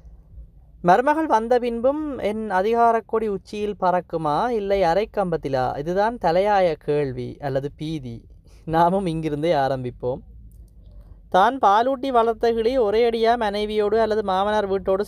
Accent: native